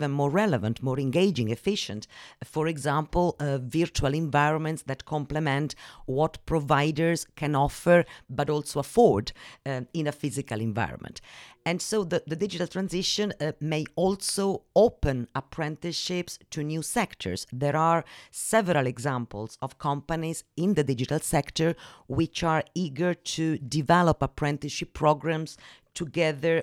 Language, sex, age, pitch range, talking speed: English, female, 50-69, 135-170 Hz, 125 wpm